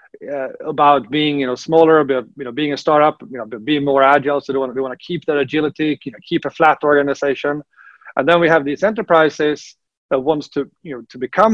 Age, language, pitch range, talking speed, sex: 30-49, English, 135-170 Hz, 215 wpm, male